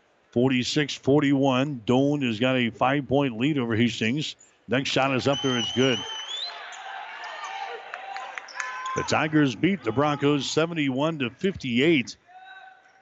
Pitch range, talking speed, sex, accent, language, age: 125-145 Hz, 100 wpm, male, American, English, 60-79